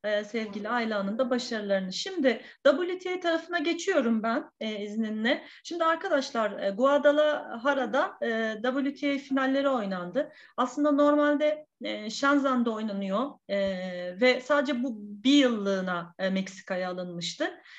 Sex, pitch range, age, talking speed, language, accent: female, 220-285 Hz, 40-59, 110 wpm, Turkish, native